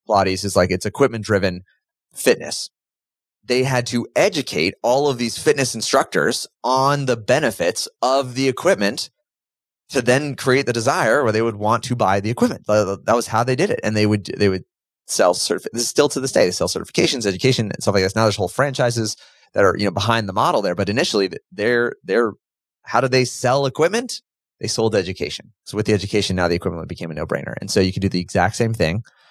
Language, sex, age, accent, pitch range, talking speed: English, male, 30-49, American, 95-125 Hz, 215 wpm